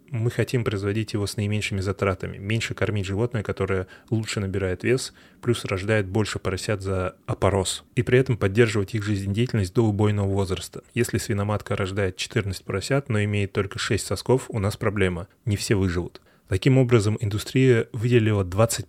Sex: male